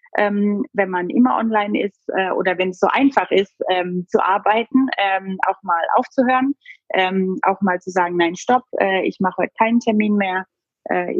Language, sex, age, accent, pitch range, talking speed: German, female, 30-49, German, 185-230 Hz, 180 wpm